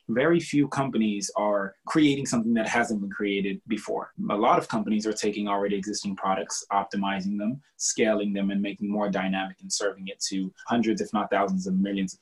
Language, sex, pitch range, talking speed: English, male, 100-130 Hz, 190 wpm